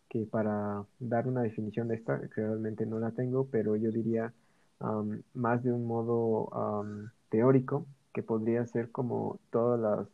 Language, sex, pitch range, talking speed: Spanish, male, 110-125 Hz, 155 wpm